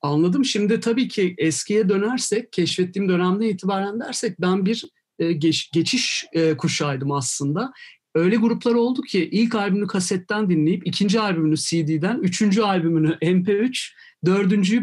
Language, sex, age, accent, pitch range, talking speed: Turkish, male, 50-69, native, 160-215 Hz, 135 wpm